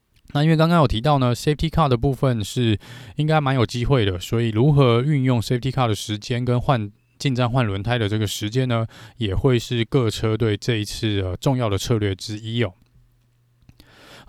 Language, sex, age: Chinese, male, 20-39